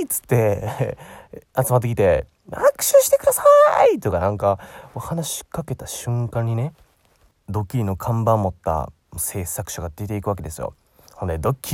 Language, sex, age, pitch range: Japanese, male, 20-39, 100-165 Hz